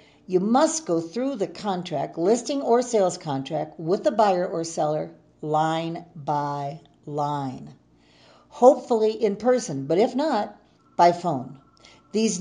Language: English